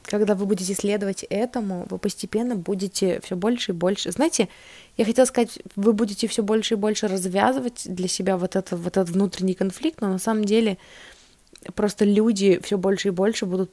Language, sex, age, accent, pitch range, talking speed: Russian, female, 20-39, native, 165-210 Hz, 185 wpm